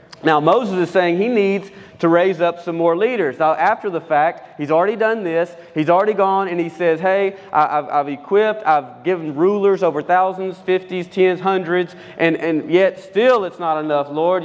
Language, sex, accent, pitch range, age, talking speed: English, male, American, 155-185 Hz, 30-49, 185 wpm